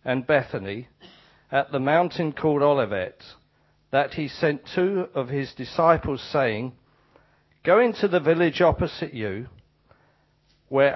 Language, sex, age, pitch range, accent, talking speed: English, male, 50-69, 135-175 Hz, British, 120 wpm